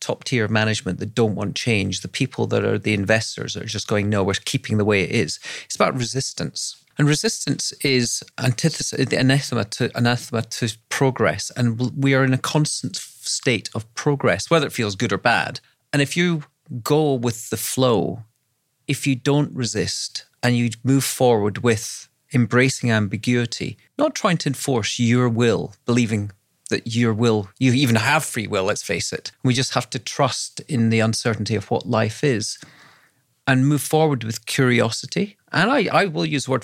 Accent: British